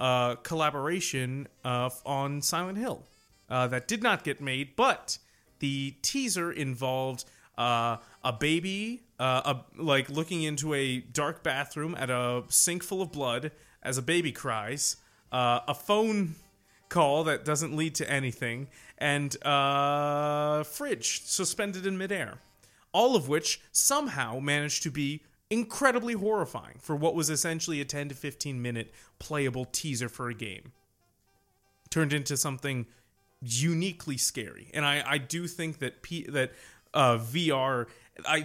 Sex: male